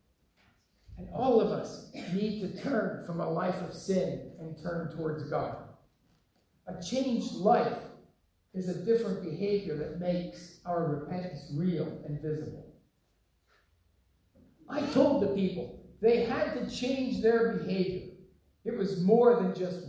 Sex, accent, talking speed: male, American, 135 wpm